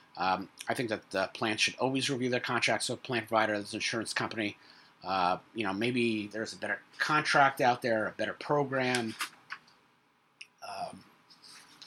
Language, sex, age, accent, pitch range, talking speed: English, male, 30-49, American, 105-130 Hz, 150 wpm